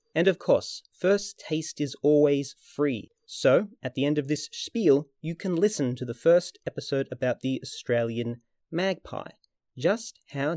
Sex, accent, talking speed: male, Australian, 160 wpm